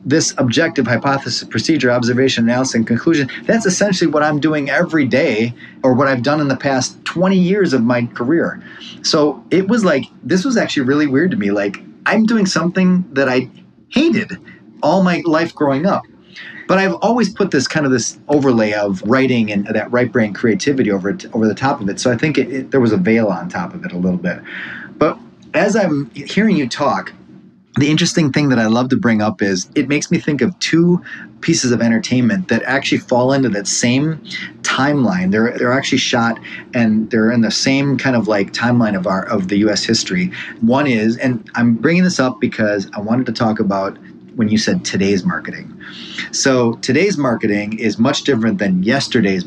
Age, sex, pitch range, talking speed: 30-49, male, 110-155 Hz, 200 wpm